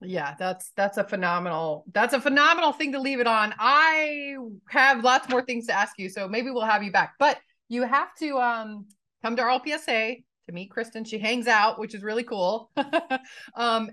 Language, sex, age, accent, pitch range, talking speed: English, female, 30-49, American, 185-250 Hz, 205 wpm